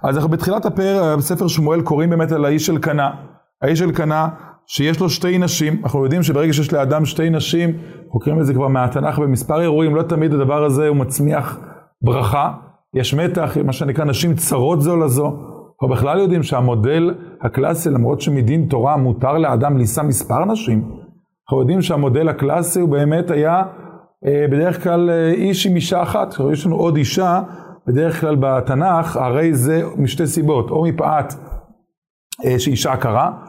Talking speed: 160 wpm